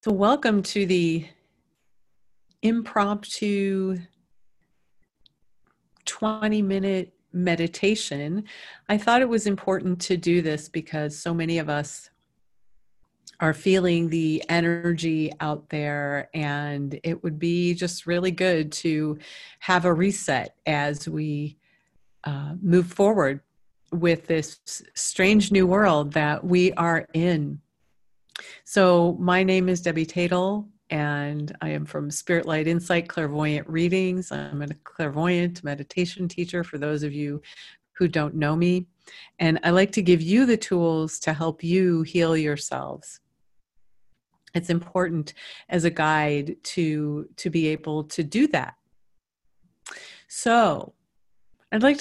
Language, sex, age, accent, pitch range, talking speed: English, female, 40-59, American, 155-185 Hz, 125 wpm